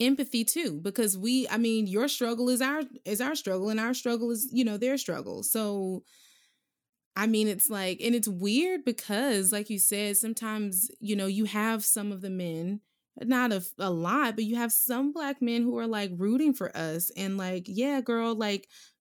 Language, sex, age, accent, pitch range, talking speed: English, female, 20-39, American, 175-230 Hz, 200 wpm